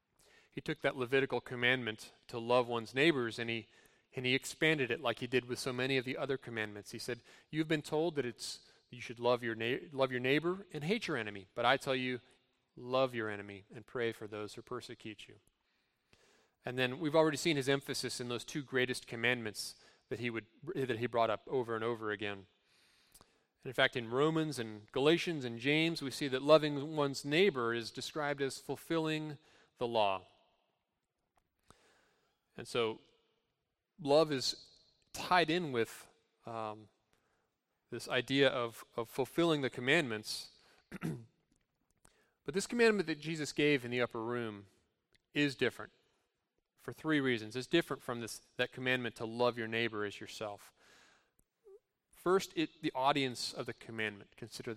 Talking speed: 165 wpm